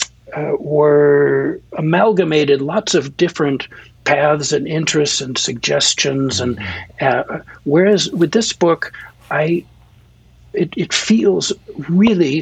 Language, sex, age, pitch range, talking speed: English, male, 60-79, 130-165 Hz, 105 wpm